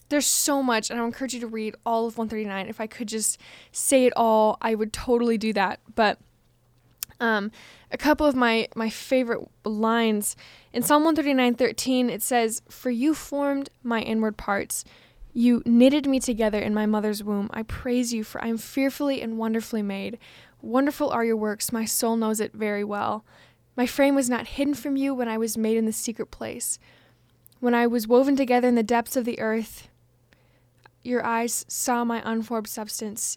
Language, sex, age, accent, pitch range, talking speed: English, female, 10-29, American, 215-245 Hz, 190 wpm